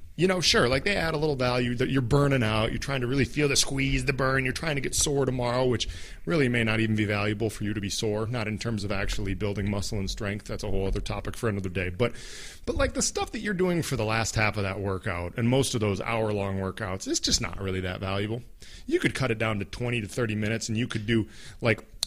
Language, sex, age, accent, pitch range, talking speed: English, male, 40-59, American, 100-135 Hz, 270 wpm